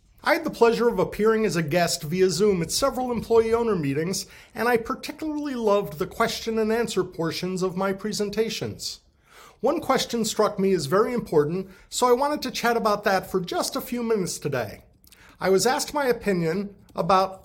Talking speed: 185 wpm